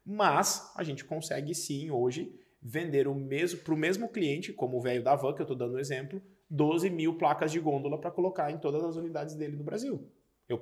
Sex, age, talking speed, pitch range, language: male, 20-39, 225 wpm, 135-175 Hz, Portuguese